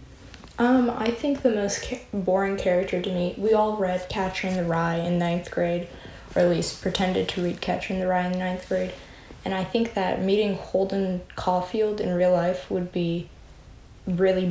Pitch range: 180-200 Hz